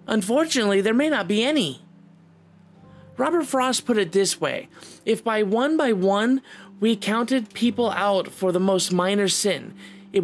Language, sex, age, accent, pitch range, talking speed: English, male, 30-49, American, 180-225 Hz, 160 wpm